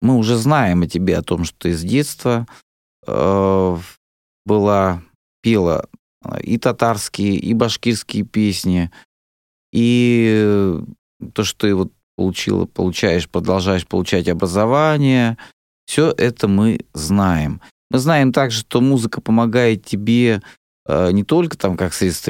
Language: Russian